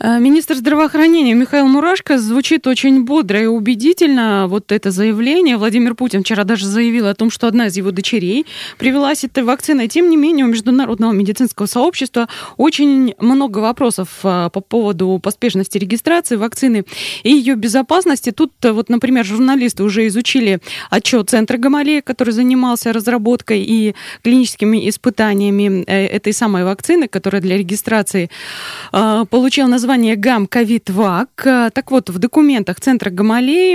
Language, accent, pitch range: Russian, native, 205-265 Hz